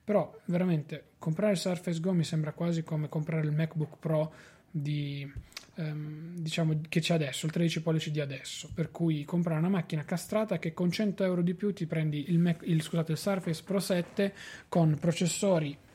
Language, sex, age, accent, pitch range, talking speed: Italian, male, 20-39, native, 155-180 Hz, 180 wpm